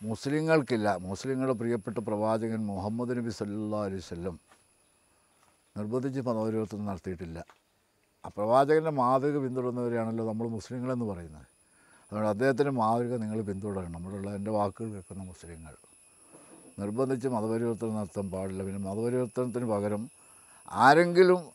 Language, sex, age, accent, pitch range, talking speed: Malayalam, male, 60-79, native, 105-135 Hz, 100 wpm